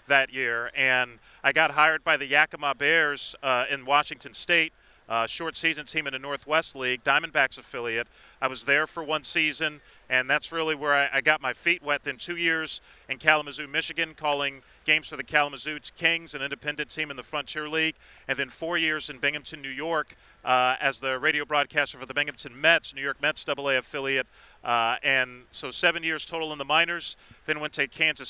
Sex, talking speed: male, 195 wpm